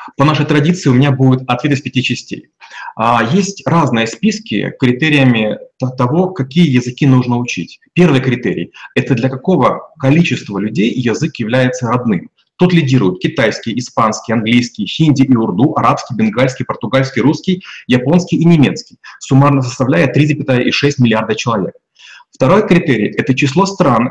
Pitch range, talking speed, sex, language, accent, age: 120-155 Hz, 135 wpm, male, Russian, native, 30-49